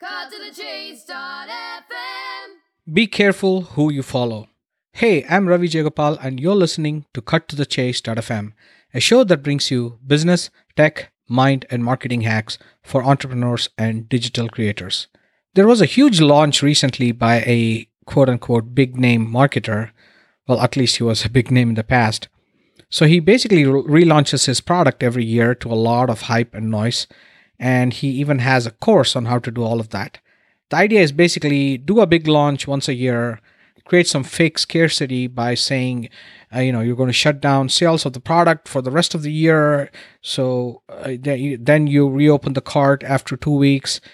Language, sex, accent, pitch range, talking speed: English, male, Indian, 125-155 Hz, 175 wpm